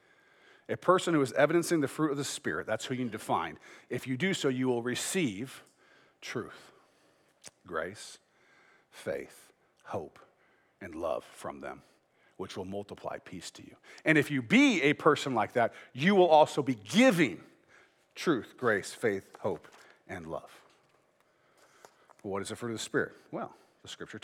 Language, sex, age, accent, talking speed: English, male, 40-59, American, 165 wpm